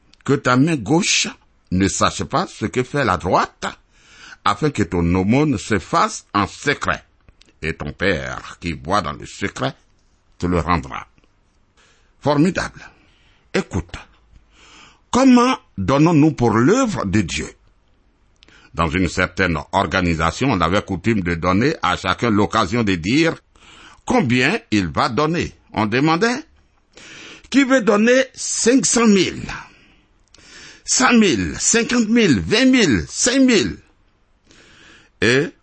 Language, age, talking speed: French, 60-79, 125 wpm